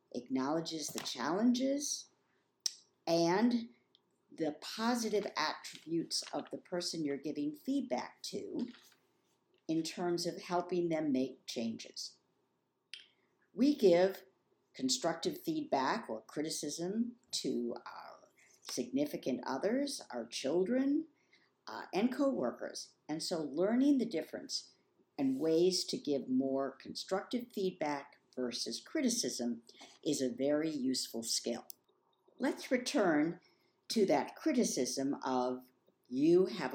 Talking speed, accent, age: 105 wpm, American, 50-69